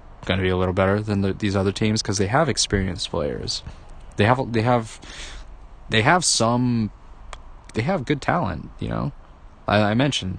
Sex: male